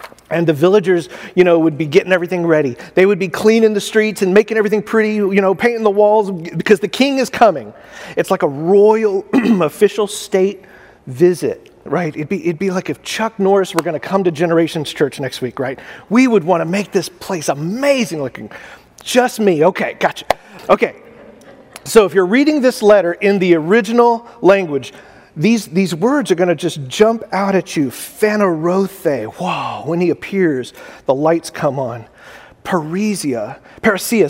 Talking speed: 180 wpm